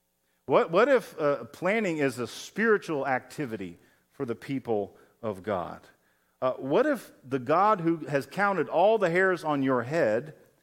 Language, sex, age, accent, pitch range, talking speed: English, male, 40-59, American, 135-200 Hz, 160 wpm